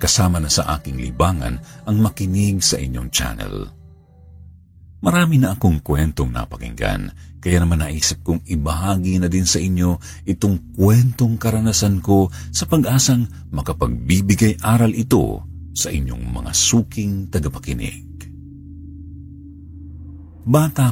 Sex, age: male, 50-69